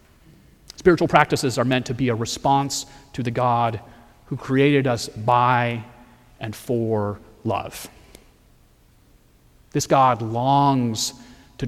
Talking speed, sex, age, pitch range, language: 115 wpm, male, 40-59, 115-135 Hz, English